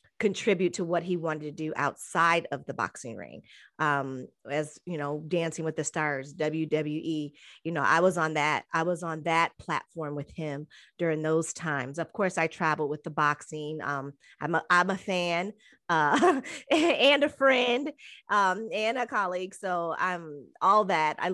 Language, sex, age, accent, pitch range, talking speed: English, female, 30-49, American, 155-185 Hz, 175 wpm